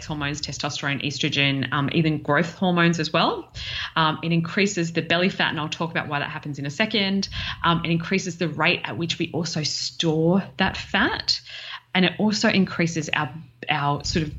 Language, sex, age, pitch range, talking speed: English, female, 20-39, 140-170 Hz, 190 wpm